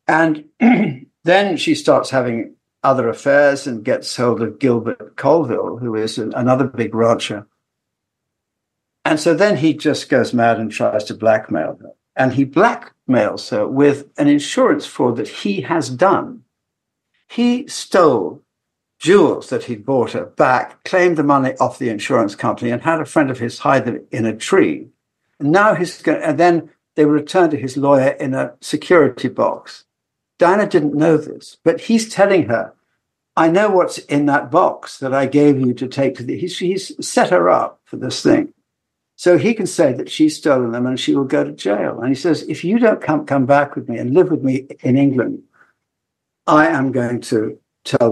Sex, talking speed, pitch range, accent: male, 180 wpm, 130-180 Hz, British